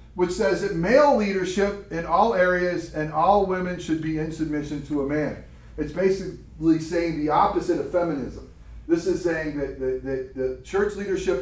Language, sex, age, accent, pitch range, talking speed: English, male, 40-59, American, 145-180 Hz, 180 wpm